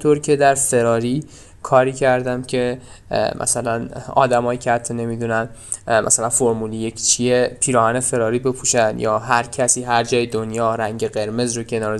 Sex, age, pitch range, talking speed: male, 10-29, 115-140 Hz, 150 wpm